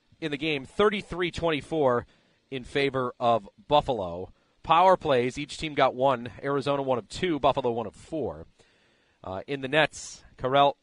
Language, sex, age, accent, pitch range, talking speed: English, male, 40-59, American, 110-155 Hz, 150 wpm